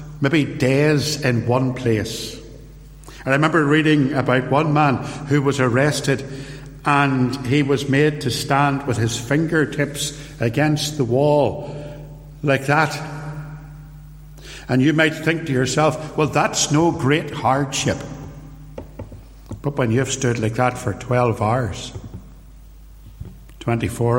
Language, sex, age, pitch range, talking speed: English, male, 60-79, 115-145 Hz, 125 wpm